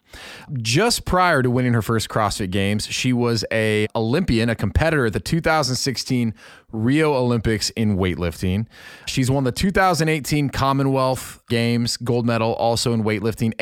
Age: 30-49